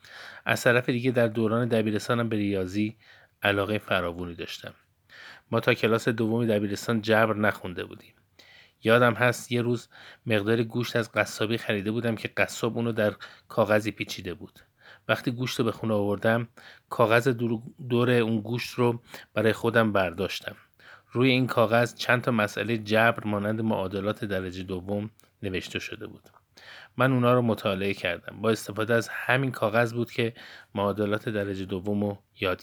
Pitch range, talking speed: 105-120 Hz, 150 wpm